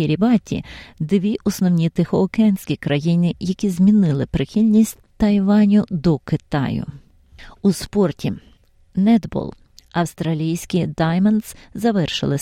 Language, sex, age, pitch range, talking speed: Ukrainian, female, 30-49, 150-200 Hz, 85 wpm